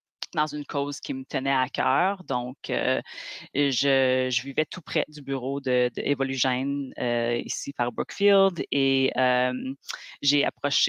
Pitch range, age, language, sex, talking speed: 125-145 Hz, 30-49, French, female, 140 wpm